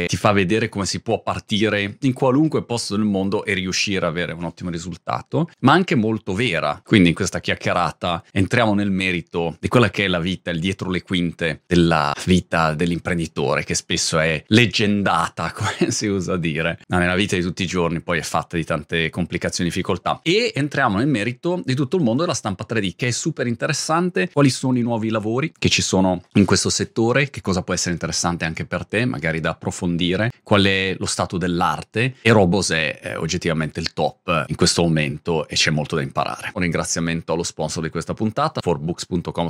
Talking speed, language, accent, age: 200 wpm, Italian, native, 30-49